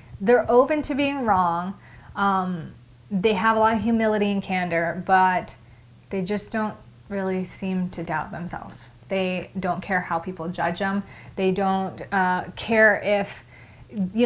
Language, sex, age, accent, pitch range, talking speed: English, female, 30-49, American, 180-220 Hz, 150 wpm